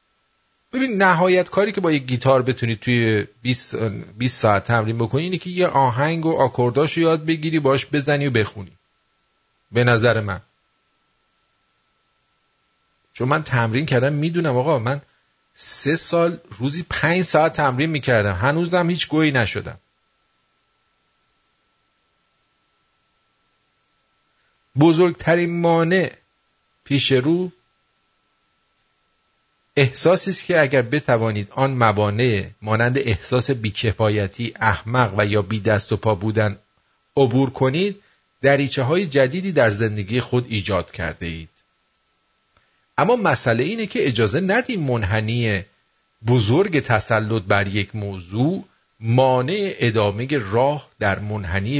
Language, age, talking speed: English, 50-69, 110 wpm